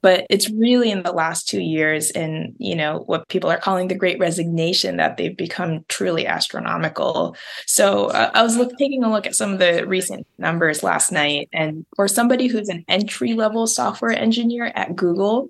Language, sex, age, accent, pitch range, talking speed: English, female, 20-39, American, 175-235 Hz, 185 wpm